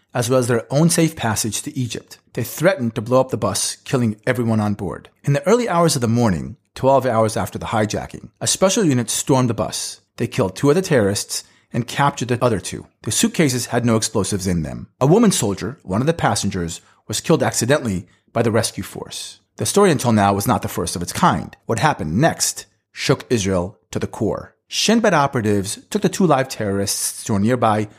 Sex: male